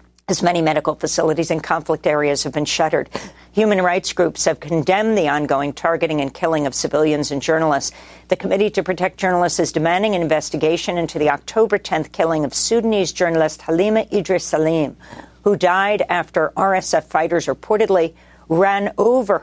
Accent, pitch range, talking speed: American, 150-190 Hz, 160 wpm